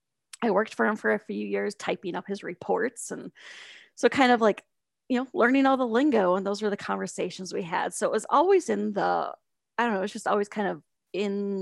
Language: English